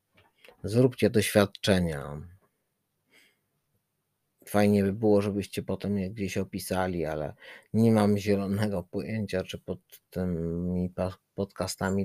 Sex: male